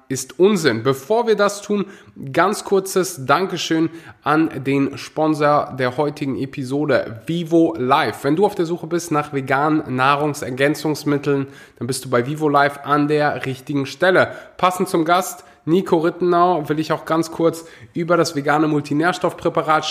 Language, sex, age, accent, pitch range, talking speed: German, male, 20-39, German, 130-165 Hz, 150 wpm